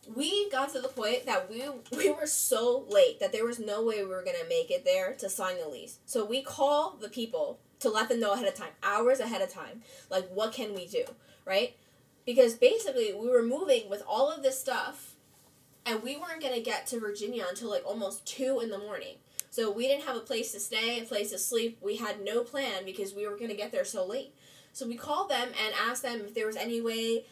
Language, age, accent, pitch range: English, 10-29, American, 200-270 Hz